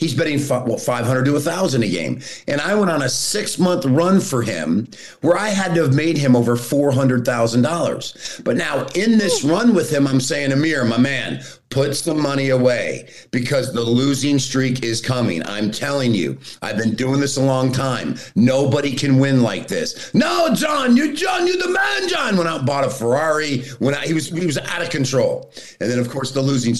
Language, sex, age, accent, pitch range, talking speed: English, male, 50-69, American, 115-145 Hz, 205 wpm